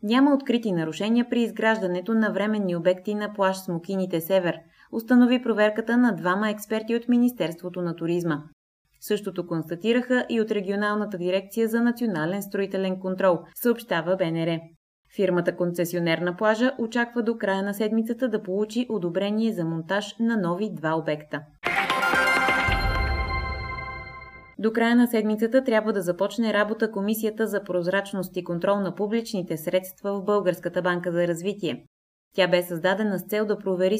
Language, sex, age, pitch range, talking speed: Bulgarian, female, 20-39, 170-220 Hz, 140 wpm